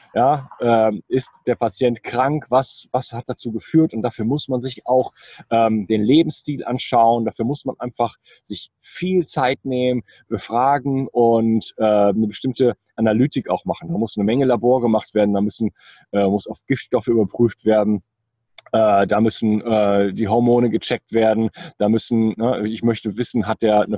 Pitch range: 110-125 Hz